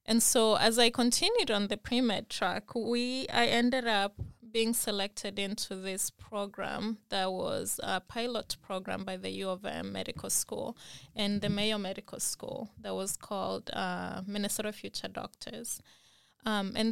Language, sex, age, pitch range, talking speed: English, female, 20-39, 190-225 Hz, 150 wpm